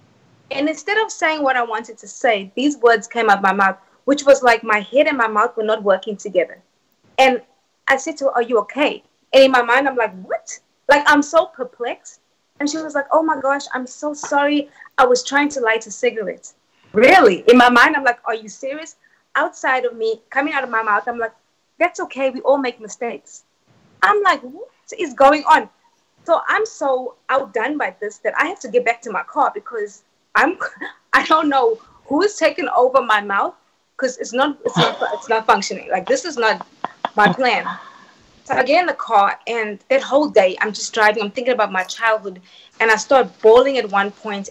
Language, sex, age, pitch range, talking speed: English, female, 20-39, 215-290 Hz, 215 wpm